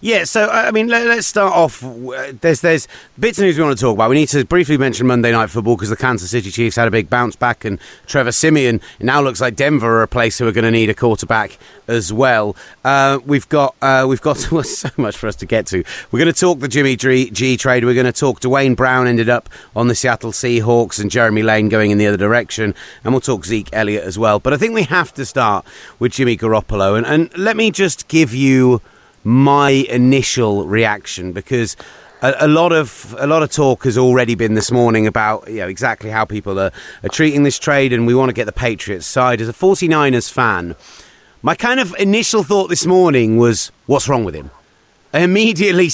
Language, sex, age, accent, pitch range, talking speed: English, male, 30-49, British, 115-150 Hz, 230 wpm